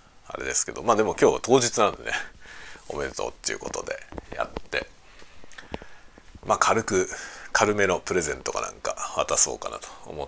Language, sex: Japanese, male